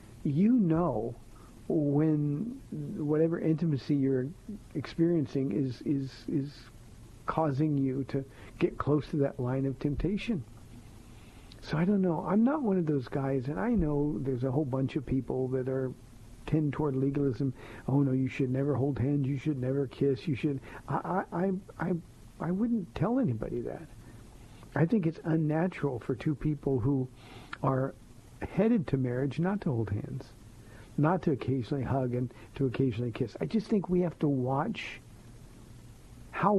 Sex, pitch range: male, 125-160 Hz